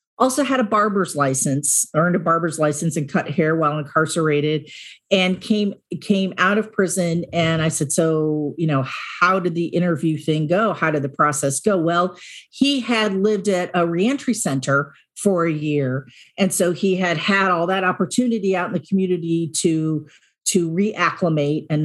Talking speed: 175 wpm